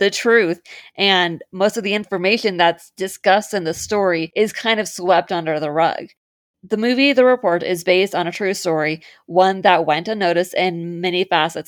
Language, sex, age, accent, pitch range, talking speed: English, female, 20-39, American, 175-215 Hz, 185 wpm